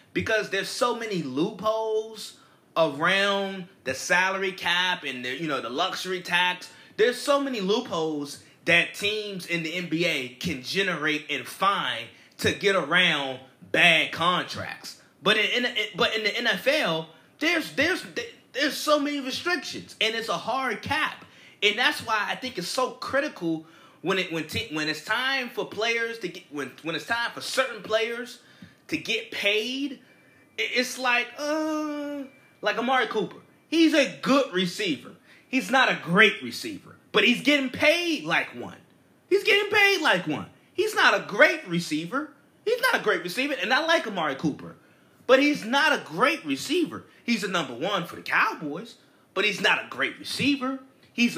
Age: 20-39